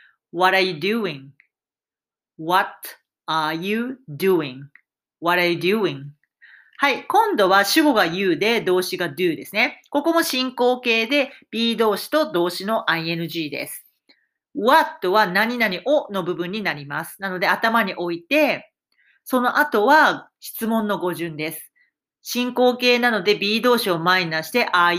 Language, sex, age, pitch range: Japanese, female, 40-59, 180-285 Hz